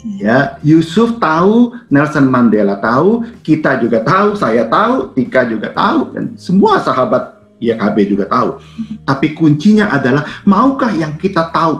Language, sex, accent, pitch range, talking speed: Indonesian, male, native, 140-215 Hz, 135 wpm